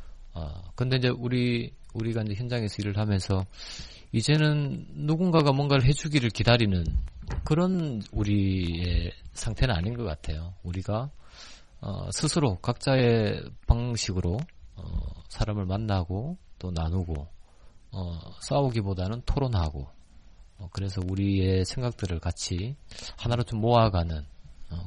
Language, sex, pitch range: Korean, male, 90-125 Hz